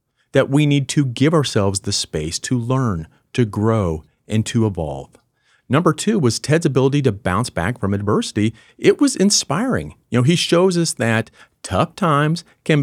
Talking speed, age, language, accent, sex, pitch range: 175 wpm, 40-59, English, American, male, 105-140 Hz